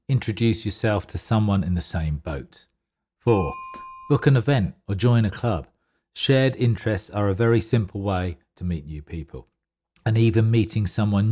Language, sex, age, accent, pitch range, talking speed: English, male, 40-59, British, 90-120 Hz, 165 wpm